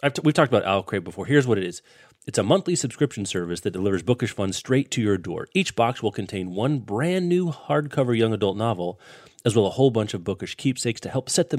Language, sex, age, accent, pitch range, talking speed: English, male, 30-49, American, 105-135 Hz, 245 wpm